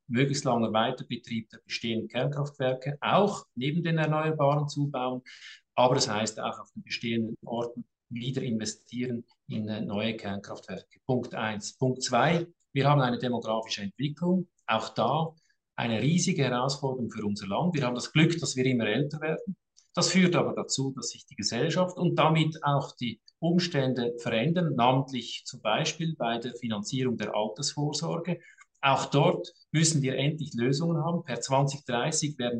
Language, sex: German, male